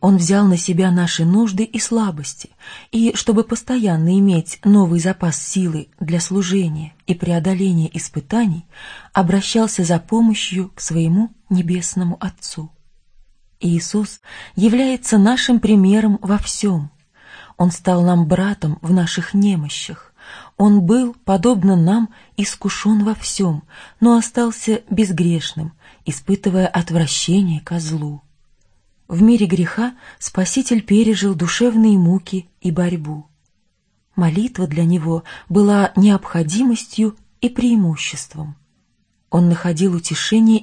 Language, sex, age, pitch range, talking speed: Russian, female, 20-39, 165-215 Hz, 110 wpm